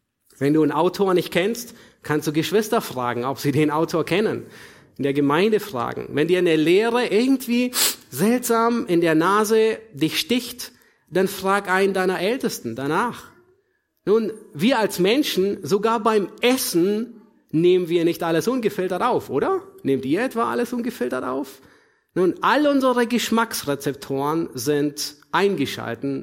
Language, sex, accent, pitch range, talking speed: German, male, German, 145-215 Hz, 140 wpm